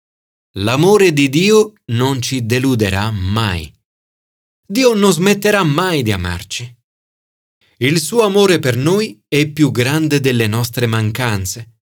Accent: native